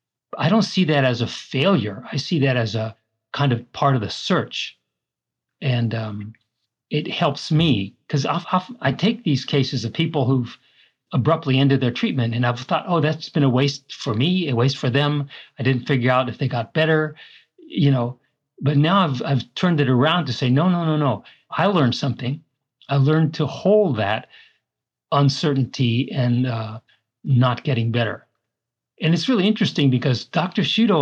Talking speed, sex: 185 wpm, male